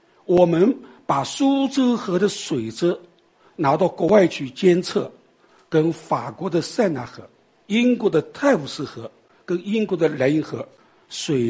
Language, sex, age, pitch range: Chinese, male, 60-79, 155-245 Hz